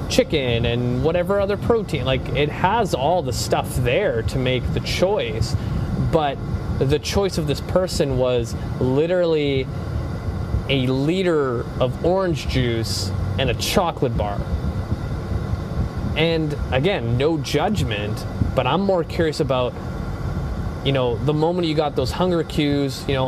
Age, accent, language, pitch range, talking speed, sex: 20-39, American, English, 115-150 Hz, 135 wpm, male